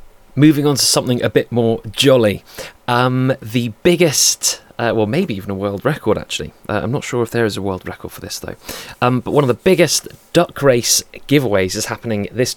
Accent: British